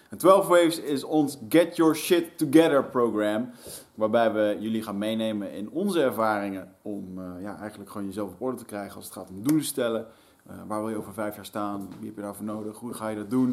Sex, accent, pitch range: male, Dutch, 105-125 Hz